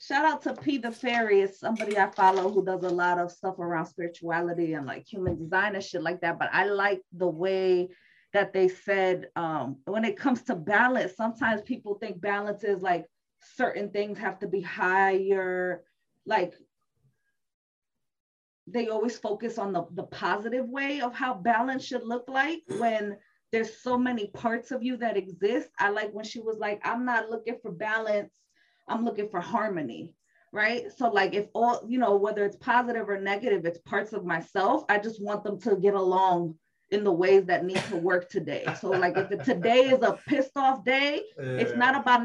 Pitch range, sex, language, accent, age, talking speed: 190-255 Hz, female, English, American, 20-39, 190 wpm